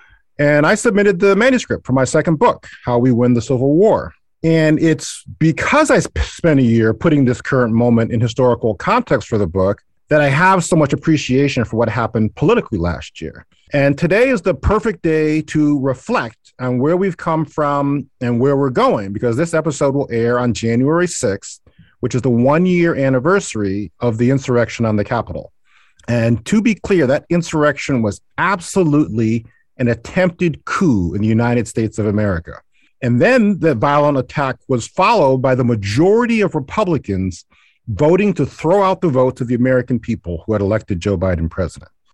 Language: English